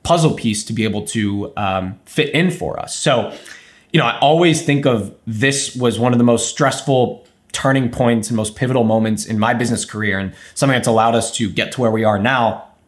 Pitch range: 110-140 Hz